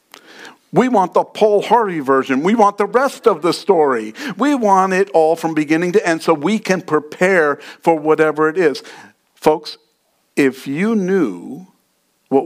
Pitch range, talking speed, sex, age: 140-195 Hz, 165 wpm, male, 50-69